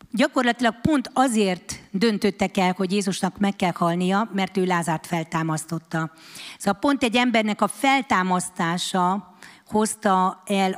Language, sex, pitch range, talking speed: Hungarian, female, 175-220 Hz, 120 wpm